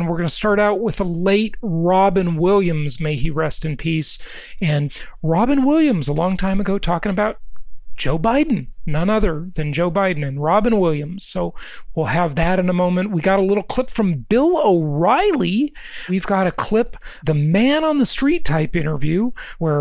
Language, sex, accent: English, male, American